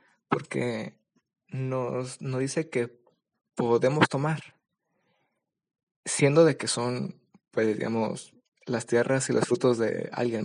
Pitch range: 120-145 Hz